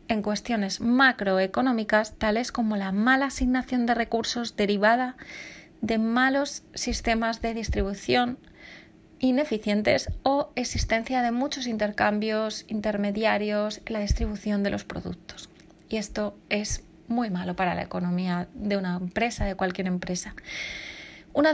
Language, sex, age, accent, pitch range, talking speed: Spanish, female, 30-49, Spanish, 210-245 Hz, 125 wpm